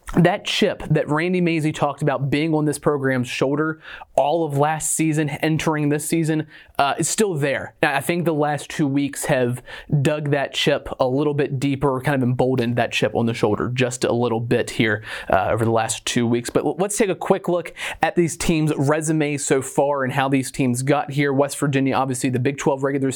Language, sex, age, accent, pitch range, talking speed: English, male, 30-49, American, 130-155 Hz, 210 wpm